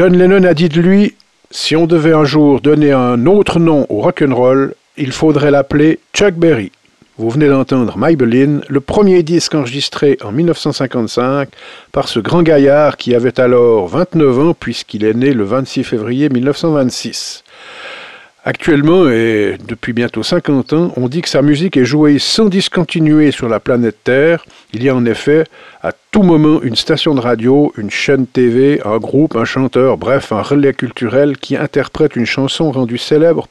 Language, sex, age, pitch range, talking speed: French, male, 50-69, 125-160 Hz, 170 wpm